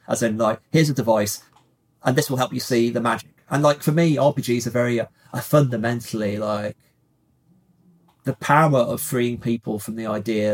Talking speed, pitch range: 180 wpm, 110-125 Hz